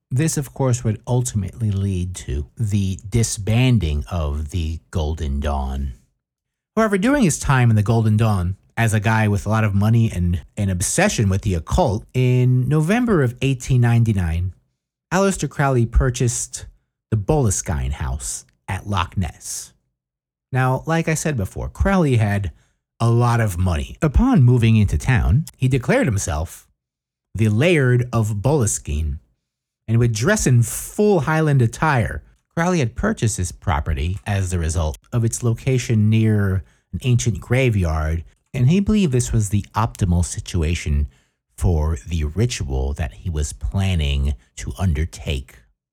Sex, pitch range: male, 80-120 Hz